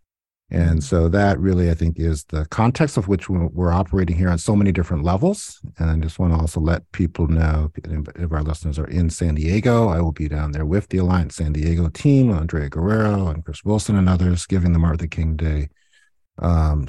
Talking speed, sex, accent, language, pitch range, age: 210 wpm, male, American, English, 80-100 Hz, 50-69